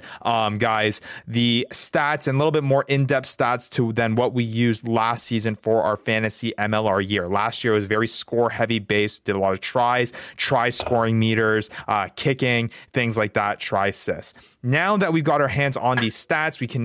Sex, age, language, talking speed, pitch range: male, 30-49, English, 205 wpm, 110-140 Hz